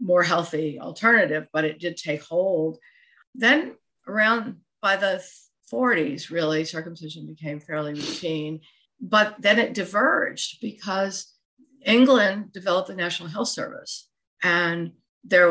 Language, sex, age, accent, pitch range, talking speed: English, female, 50-69, American, 160-210 Hz, 120 wpm